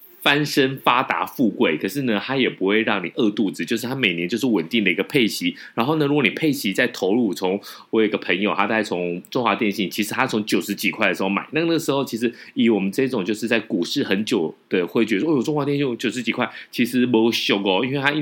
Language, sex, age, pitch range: Chinese, male, 30-49, 105-145 Hz